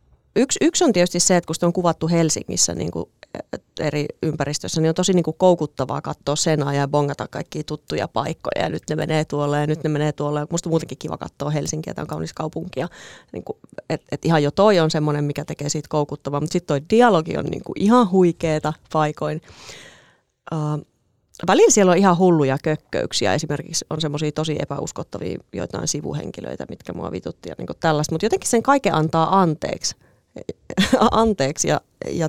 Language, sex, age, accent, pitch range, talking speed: Finnish, female, 30-49, native, 150-180 Hz, 180 wpm